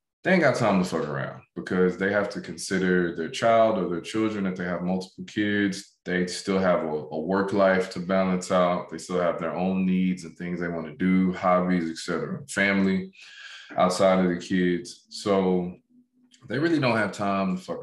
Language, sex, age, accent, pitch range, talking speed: English, male, 20-39, American, 85-100 Hz, 200 wpm